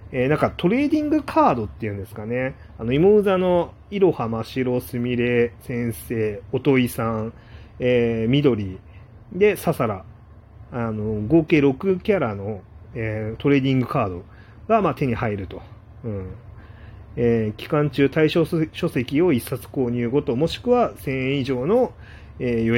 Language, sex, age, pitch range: Japanese, male, 30-49, 105-145 Hz